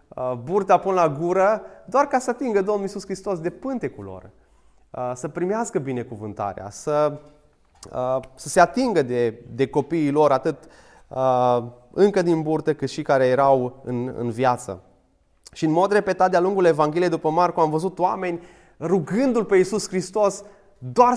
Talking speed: 155 wpm